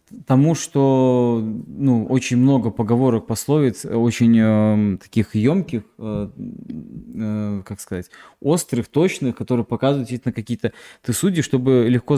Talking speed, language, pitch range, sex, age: 125 wpm, Russian, 115-135 Hz, male, 20-39